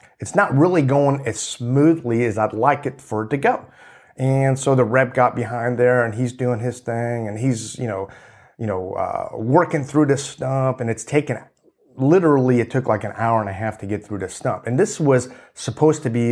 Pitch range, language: 110-135 Hz, English